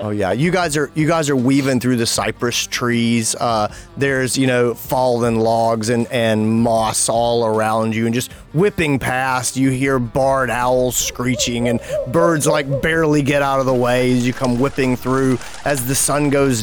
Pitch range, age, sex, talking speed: 115-140 Hz, 30-49, male, 190 wpm